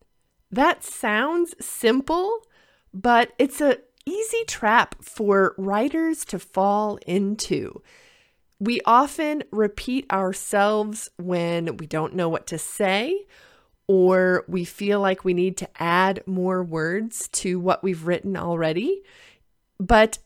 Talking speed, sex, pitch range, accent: 120 wpm, female, 185-275 Hz, American